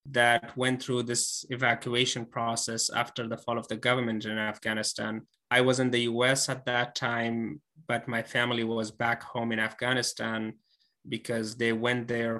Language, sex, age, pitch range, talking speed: English, male, 20-39, 115-130 Hz, 165 wpm